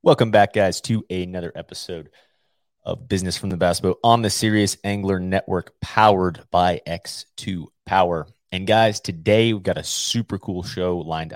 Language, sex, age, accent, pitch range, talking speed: English, male, 30-49, American, 80-100 Hz, 165 wpm